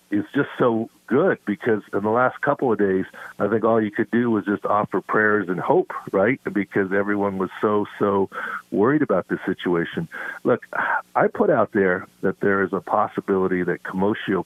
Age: 50-69